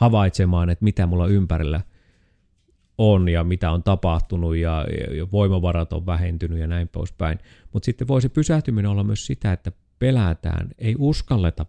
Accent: native